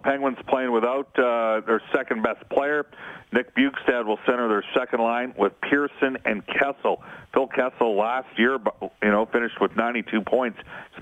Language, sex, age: English, male, 40-59